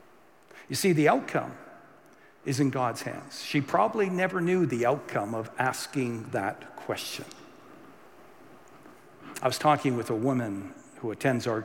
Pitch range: 120-160 Hz